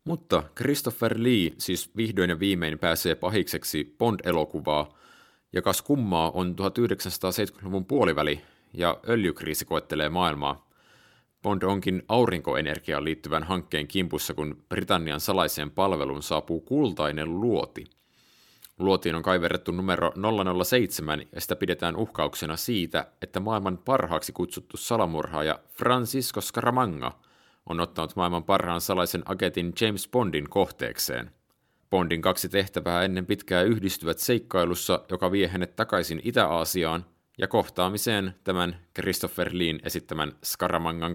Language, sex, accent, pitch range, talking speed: Finnish, male, native, 85-110 Hz, 110 wpm